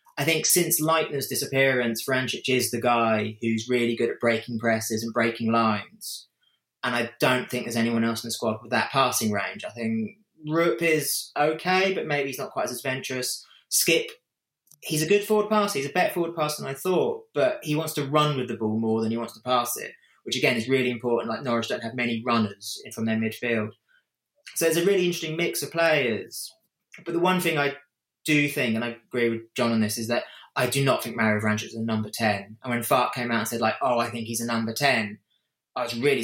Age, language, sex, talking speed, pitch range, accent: 20-39, English, male, 230 wpm, 115-150 Hz, British